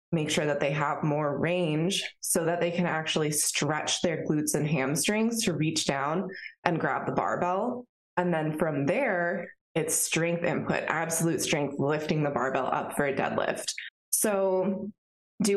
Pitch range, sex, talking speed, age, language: 150-185 Hz, female, 160 wpm, 20-39, English